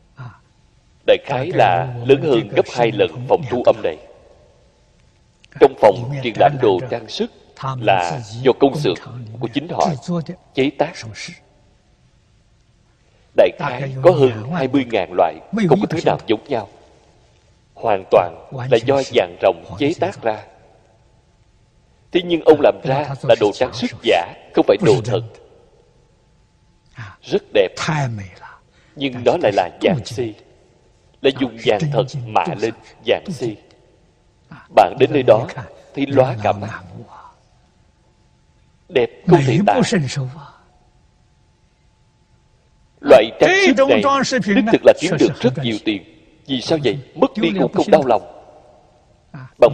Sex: male